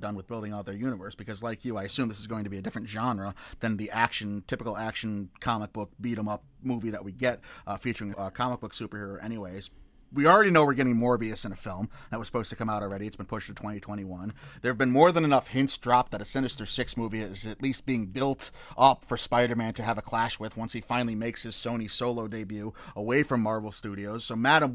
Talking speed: 240 wpm